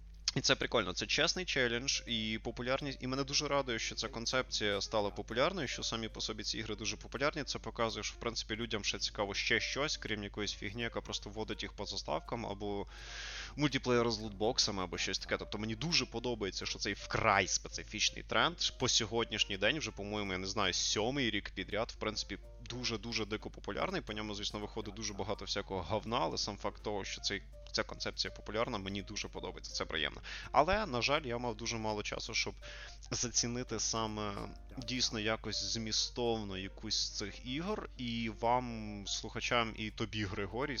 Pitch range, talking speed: 105-120 Hz, 180 wpm